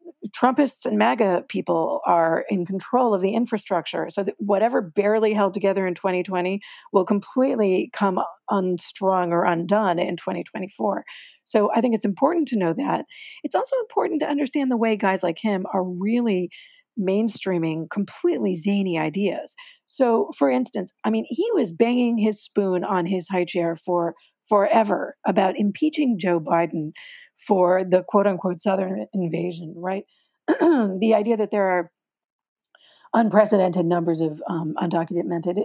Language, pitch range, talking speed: English, 175-230 Hz, 145 wpm